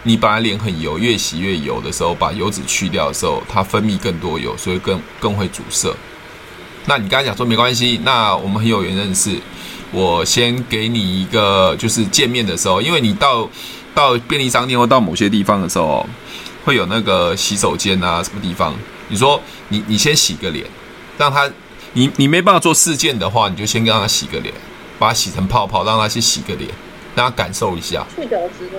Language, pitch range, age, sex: Chinese, 105-140 Hz, 20-39, male